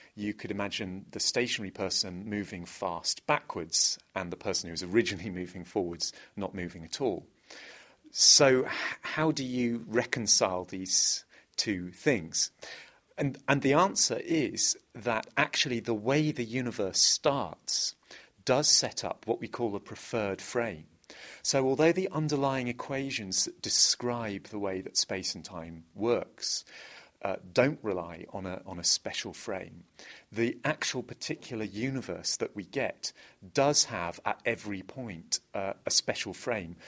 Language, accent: English, British